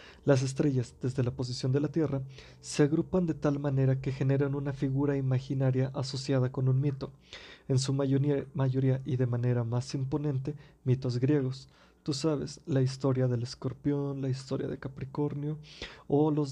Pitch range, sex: 130-145 Hz, male